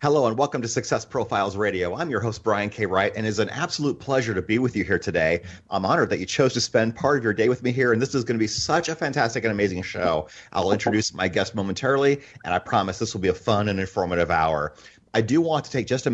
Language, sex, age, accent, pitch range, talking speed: English, male, 30-49, American, 105-135 Hz, 275 wpm